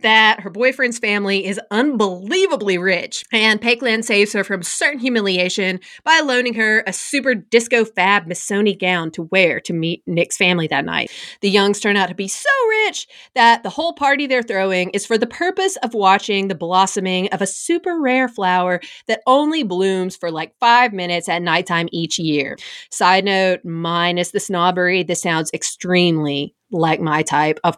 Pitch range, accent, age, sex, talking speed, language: 180-255 Hz, American, 30-49, female, 175 wpm, English